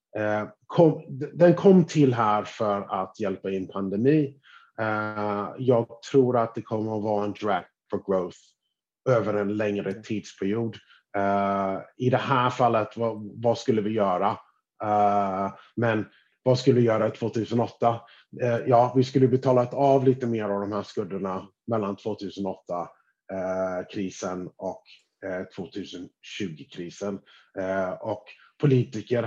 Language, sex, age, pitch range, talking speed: Swedish, male, 30-49, 100-120 Hz, 135 wpm